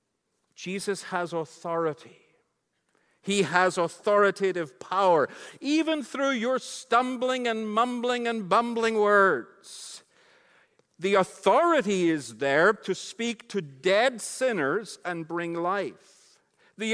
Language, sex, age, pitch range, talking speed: English, male, 50-69, 190-260 Hz, 105 wpm